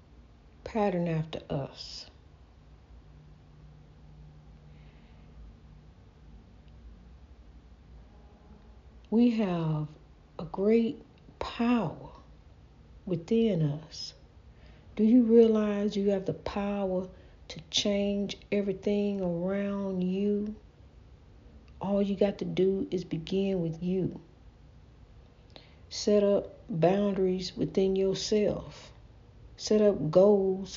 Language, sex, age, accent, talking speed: English, female, 60-79, American, 75 wpm